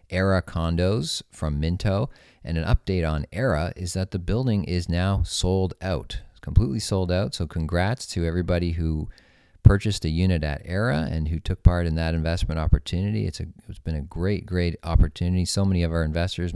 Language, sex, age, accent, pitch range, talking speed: English, male, 40-59, American, 80-95 Hz, 180 wpm